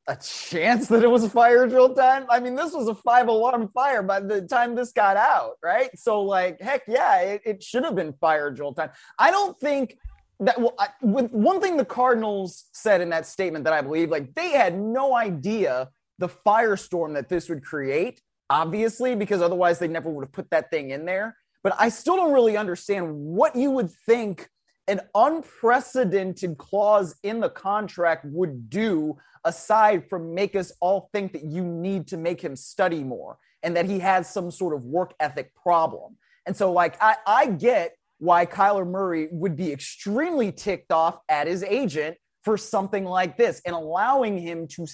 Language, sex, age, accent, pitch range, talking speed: English, male, 30-49, American, 165-230 Hz, 190 wpm